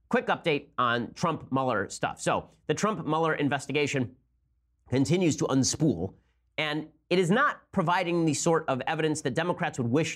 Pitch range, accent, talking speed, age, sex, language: 125-165 Hz, American, 160 wpm, 30-49, male, English